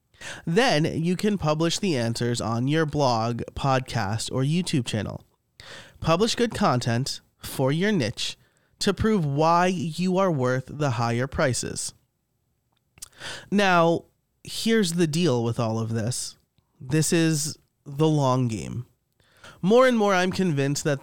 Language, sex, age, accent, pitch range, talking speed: English, male, 30-49, American, 125-170 Hz, 135 wpm